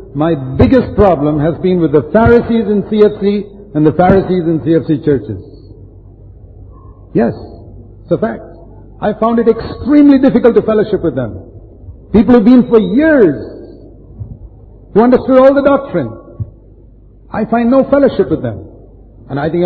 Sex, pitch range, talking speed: male, 110-180 Hz, 145 wpm